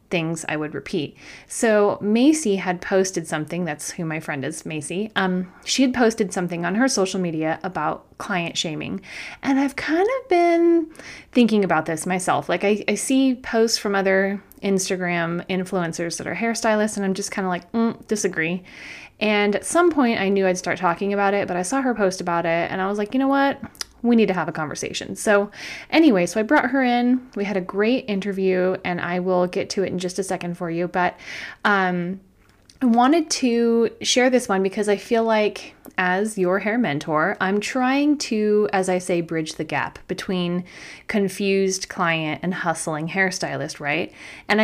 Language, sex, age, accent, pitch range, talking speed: English, female, 20-39, American, 180-225 Hz, 195 wpm